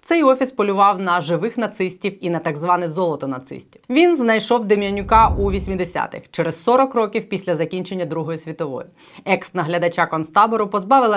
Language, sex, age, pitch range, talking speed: Ukrainian, female, 20-39, 175-225 Hz, 145 wpm